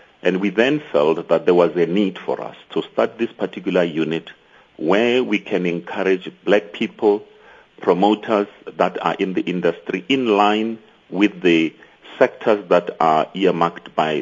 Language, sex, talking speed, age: English, male, 155 wpm, 50-69